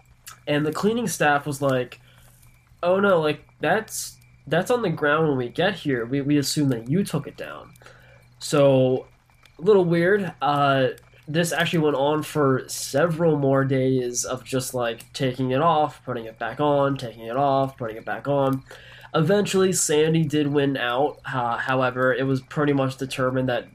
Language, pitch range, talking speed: English, 125-150 Hz, 175 wpm